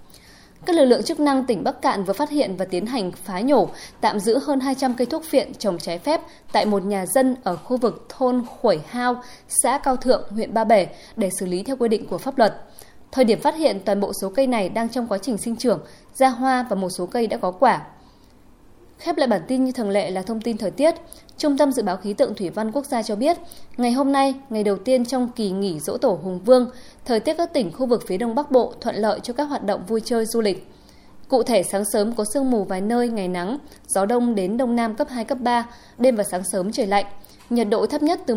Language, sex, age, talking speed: Vietnamese, female, 20-39, 255 wpm